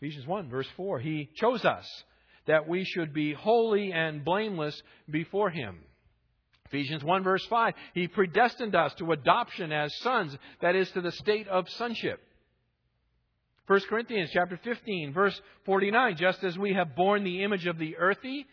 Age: 50-69